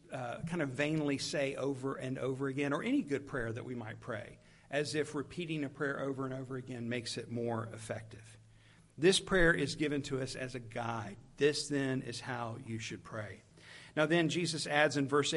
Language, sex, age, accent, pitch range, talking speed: English, male, 50-69, American, 135-175 Hz, 205 wpm